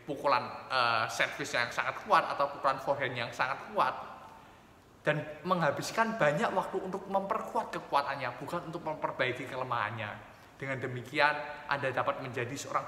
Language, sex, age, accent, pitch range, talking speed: Indonesian, male, 20-39, native, 125-170 Hz, 135 wpm